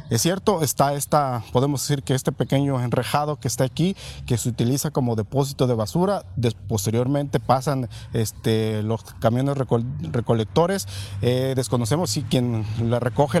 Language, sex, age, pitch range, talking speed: Spanish, male, 40-59, 120-150 Hz, 135 wpm